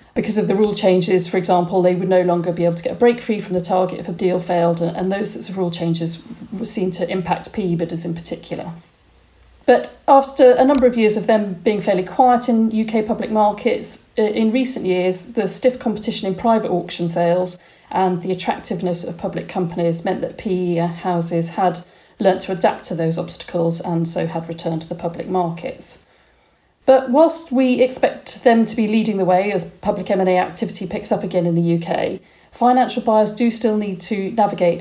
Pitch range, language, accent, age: 175-225 Hz, English, British, 40-59